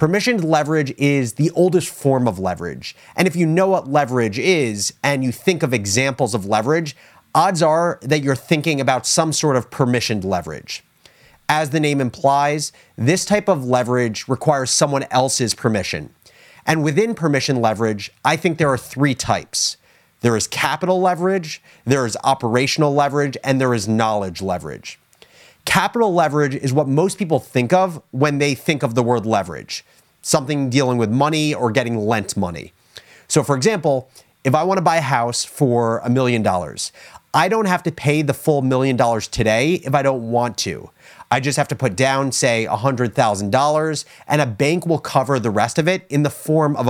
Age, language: 30-49, English